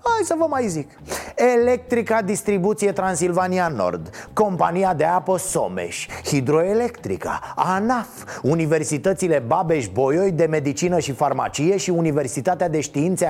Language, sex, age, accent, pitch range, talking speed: Romanian, male, 30-49, native, 140-205 Hz, 115 wpm